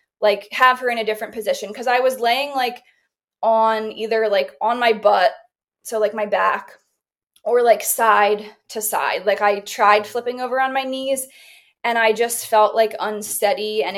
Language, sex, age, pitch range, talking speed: English, female, 20-39, 210-255 Hz, 180 wpm